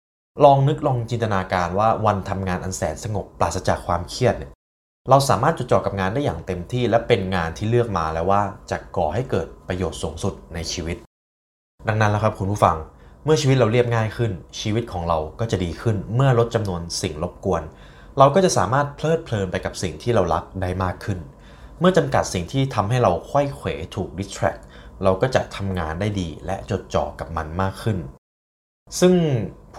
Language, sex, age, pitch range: Thai, male, 20-39, 80-120 Hz